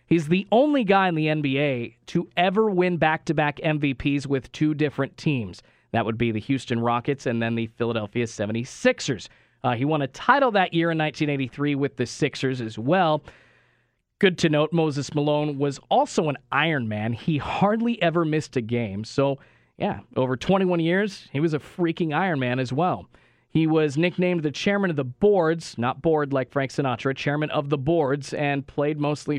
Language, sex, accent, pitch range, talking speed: English, male, American, 120-160 Hz, 180 wpm